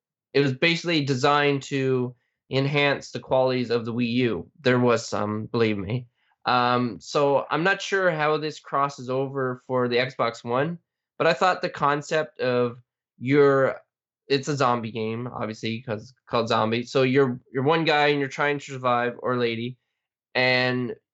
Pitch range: 120-140 Hz